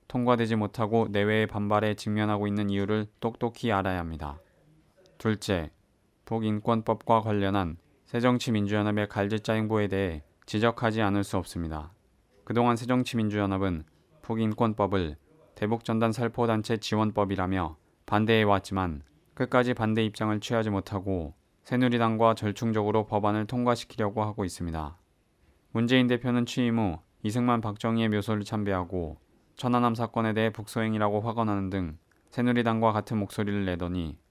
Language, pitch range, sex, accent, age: Korean, 100-115 Hz, male, native, 20-39